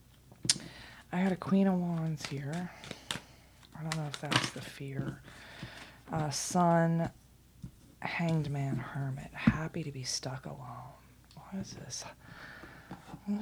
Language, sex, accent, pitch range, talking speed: English, female, American, 135-160 Hz, 130 wpm